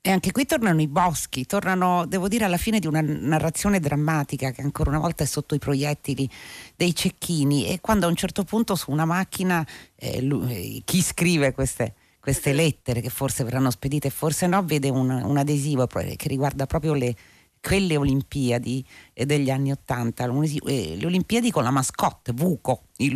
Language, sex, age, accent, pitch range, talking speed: Italian, female, 40-59, native, 125-160 Hz, 180 wpm